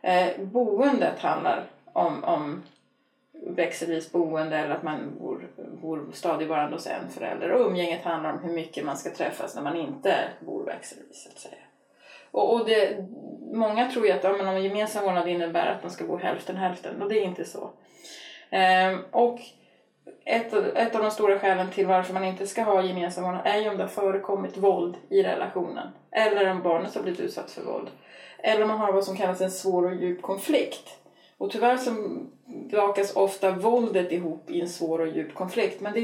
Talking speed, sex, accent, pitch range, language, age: 190 wpm, female, native, 175-225 Hz, Swedish, 20-39